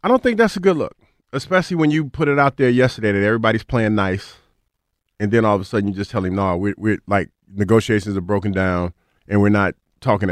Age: 40-59